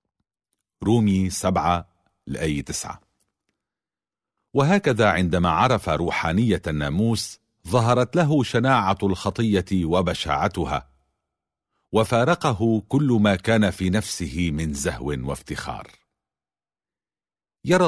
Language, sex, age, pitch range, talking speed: Arabic, male, 50-69, 80-115 Hz, 80 wpm